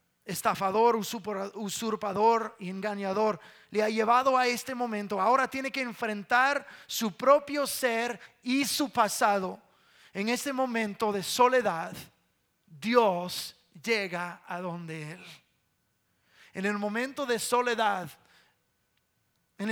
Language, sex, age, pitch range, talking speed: English, male, 30-49, 195-250 Hz, 110 wpm